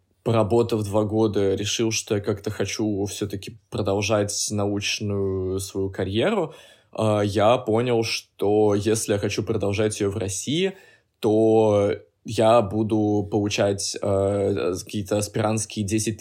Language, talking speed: Russian, 110 wpm